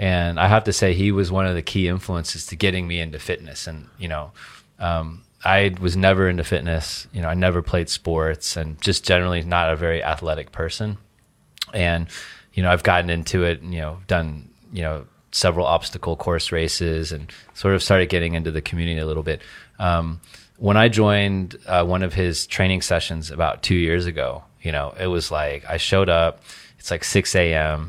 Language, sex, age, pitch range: Chinese, male, 30-49, 85-100 Hz